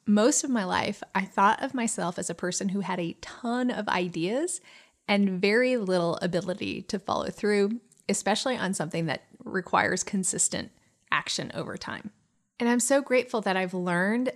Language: English